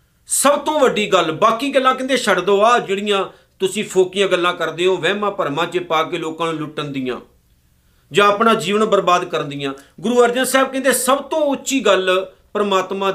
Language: Punjabi